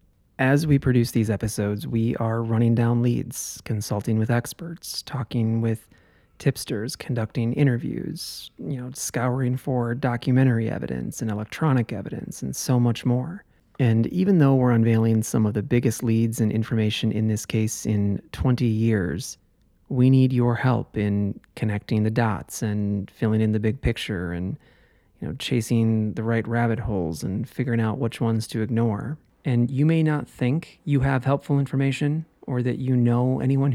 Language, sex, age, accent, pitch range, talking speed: English, male, 30-49, American, 110-125 Hz, 165 wpm